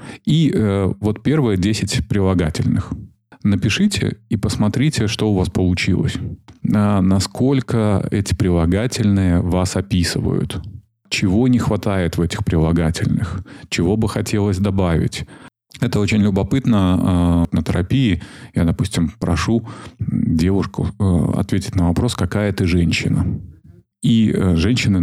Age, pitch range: 30-49, 90-110 Hz